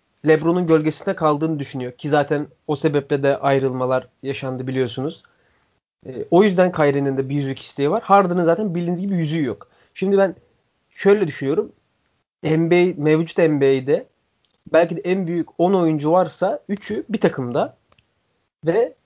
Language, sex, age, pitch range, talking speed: Turkish, male, 30-49, 145-195 Hz, 140 wpm